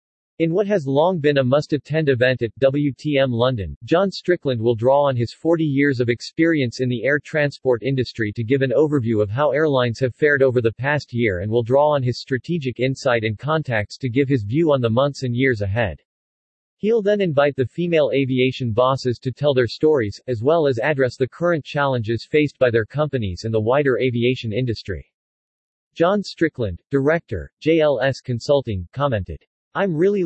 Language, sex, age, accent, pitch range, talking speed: English, male, 40-59, American, 120-150 Hz, 185 wpm